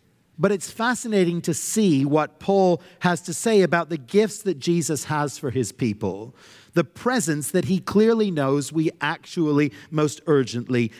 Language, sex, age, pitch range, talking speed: English, male, 50-69, 125-180 Hz, 160 wpm